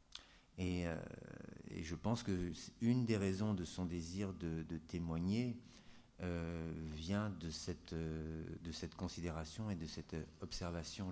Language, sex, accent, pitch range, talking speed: French, male, French, 85-100 Hz, 145 wpm